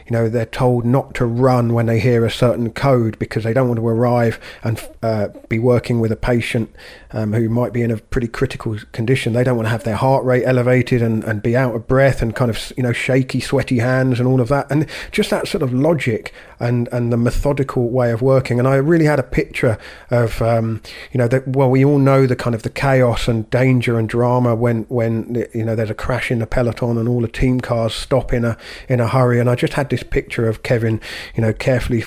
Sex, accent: male, British